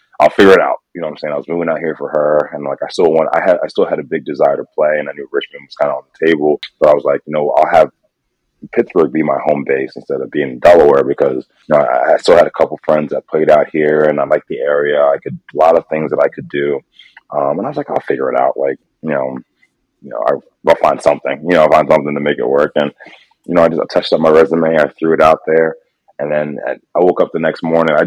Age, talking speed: 20-39, 295 wpm